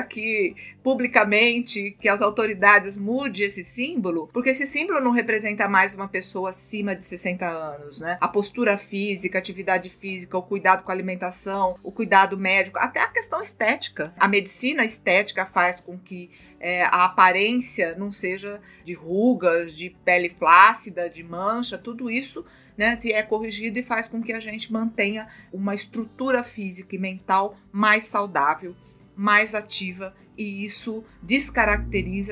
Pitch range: 185-220 Hz